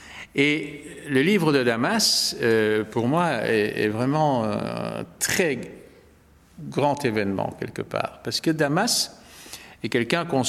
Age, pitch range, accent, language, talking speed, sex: 50-69, 110-135 Hz, French, French, 120 wpm, male